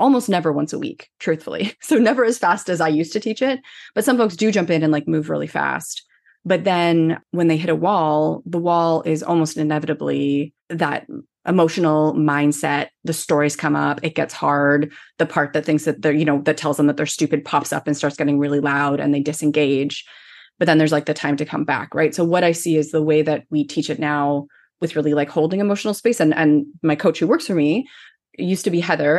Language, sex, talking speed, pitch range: English, female, 230 wpm, 150-180 Hz